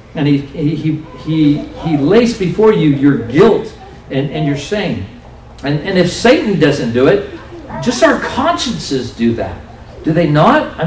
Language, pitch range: English, 130-195 Hz